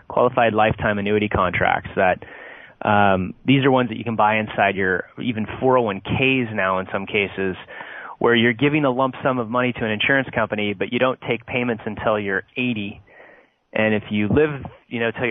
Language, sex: English, male